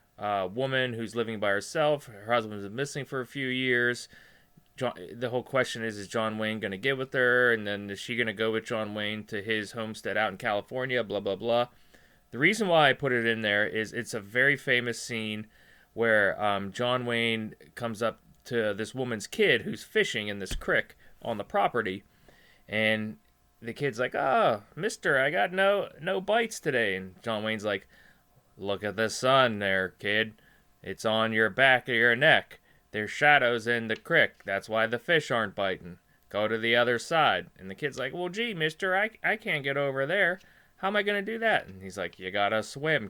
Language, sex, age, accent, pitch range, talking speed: English, male, 20-39, American, 110-135 Hz, 205 wpm